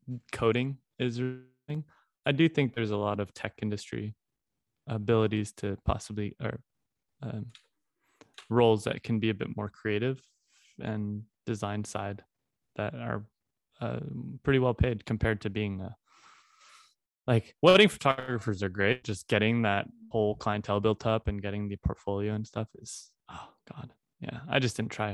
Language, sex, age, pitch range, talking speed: English, male, 20-39, 105-120 Hz, 150 wpm